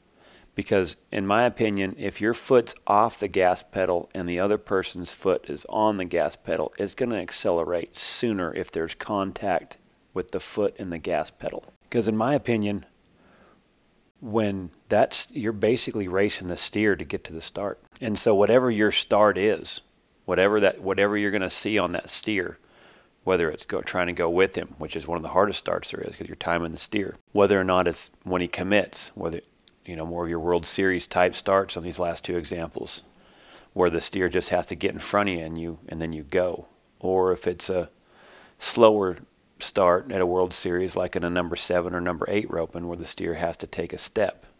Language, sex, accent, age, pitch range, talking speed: English, male, American, 40-59, 85-100 Hz, 210 wpm